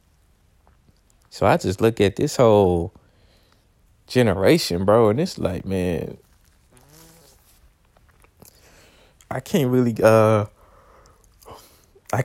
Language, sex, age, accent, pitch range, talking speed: English, male, 20-39, American, 90-110 Hz, 90 wpm